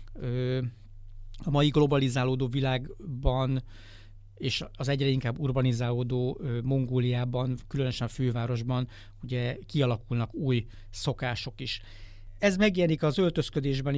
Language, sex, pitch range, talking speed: Hungarian, male, 120-135 Hz, 95 wpm